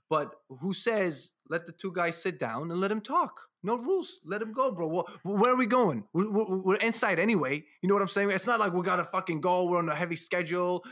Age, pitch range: 20-39, 125-185 Hz